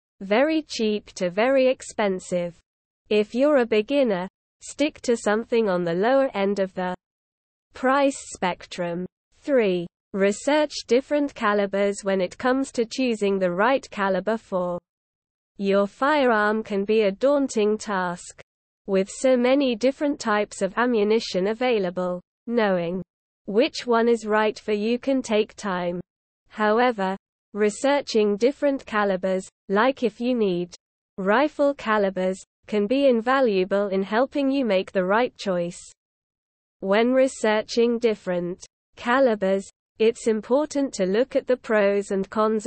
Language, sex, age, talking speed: English, female, 20-39, 130 wpm